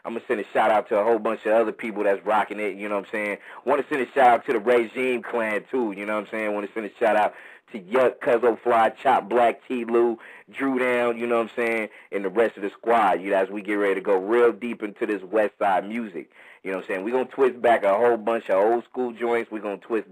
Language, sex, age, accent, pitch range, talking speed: English, male, 30-49, American, 100-120 Hz, 290 wpm